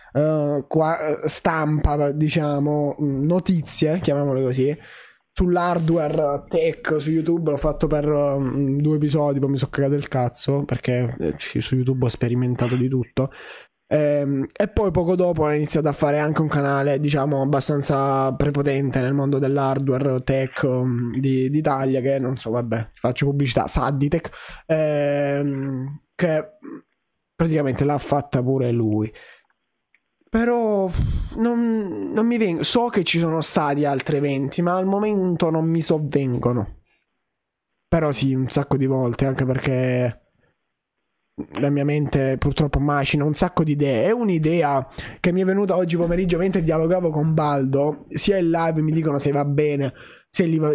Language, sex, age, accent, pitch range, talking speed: Italian, male, 20-39, native, 135-165 Hz, 145 wpm